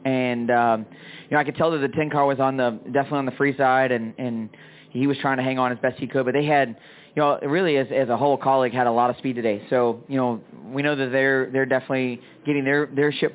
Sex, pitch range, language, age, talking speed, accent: male, 125-145 Hz, English, 20-39, 275 wpm, American